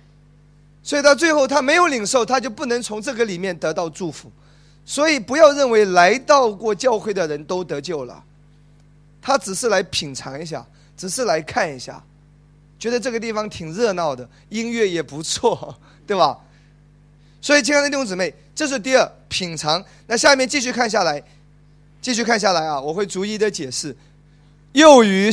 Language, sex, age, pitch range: Chinese, male, 30-49, 150-235 Hz